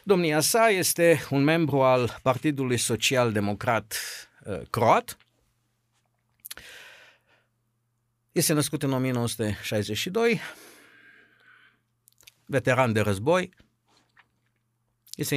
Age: 50-69